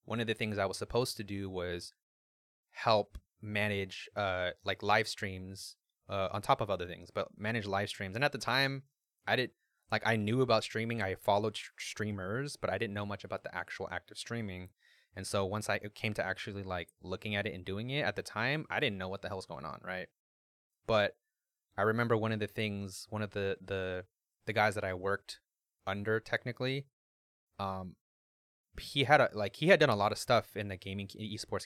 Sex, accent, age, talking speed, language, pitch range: male, American, 20-39, 210 wpm, English, 95-115 Hz